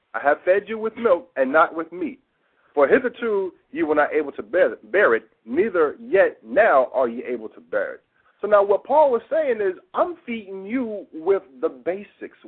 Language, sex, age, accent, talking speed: English, male, 50-69, American, 205 wpm